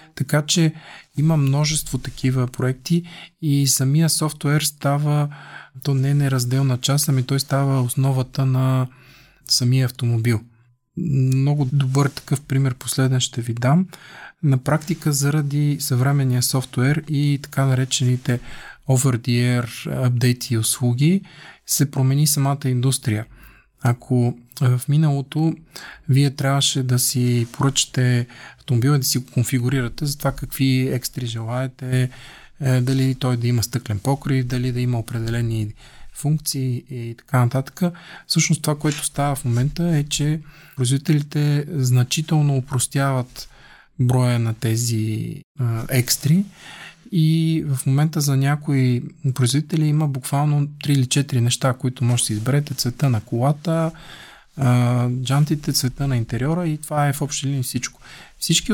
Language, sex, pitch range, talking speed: Bulgarian, male, 125-150 Hz, 125 wpm